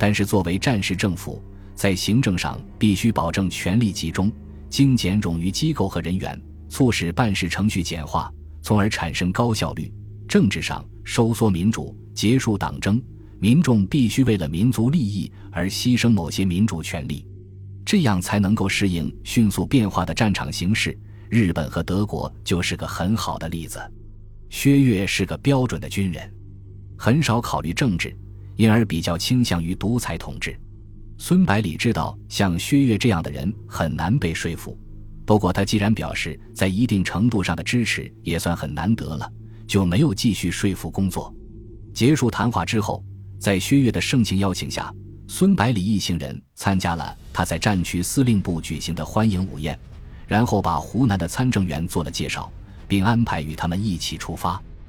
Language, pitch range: Chinese, 85-110 Hz